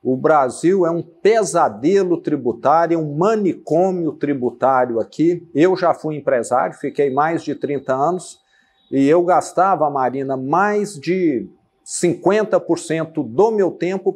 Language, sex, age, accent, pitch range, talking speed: Portuguese, male, 50-69, Brazilian, 160-205 Hz, 125 wpm